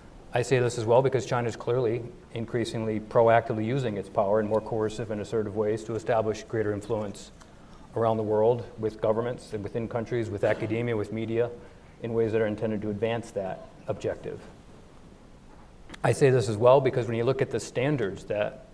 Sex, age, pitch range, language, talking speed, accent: male, 40-59, 110-120 Hz, English, 185 wpm, American